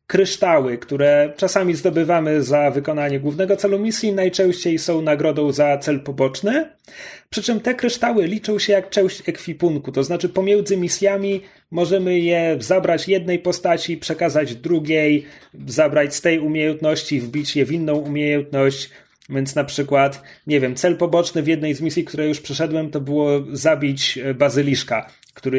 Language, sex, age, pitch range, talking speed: Polish, male, 30-49, 145-190 Hz, 150 wpm